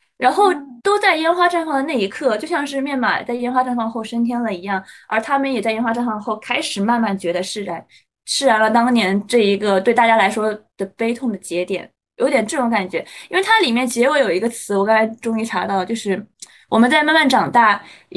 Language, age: Chinese, 20-39